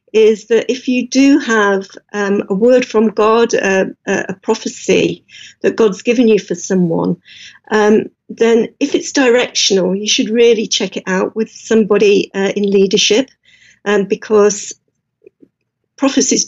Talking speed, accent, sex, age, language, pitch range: 140 wpm, British, female, 50-69, English, 200-230 Hz